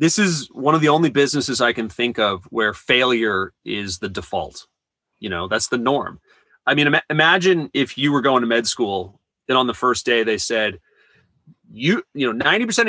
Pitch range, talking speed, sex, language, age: 130-175 Hz, 200 wpm, male, English, 30-49